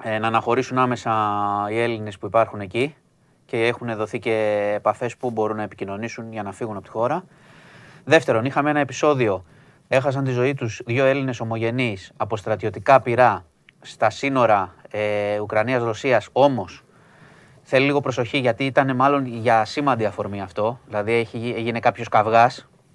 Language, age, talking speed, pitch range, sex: Greek, 20-39, 145 wpm, 105-140 Hz, male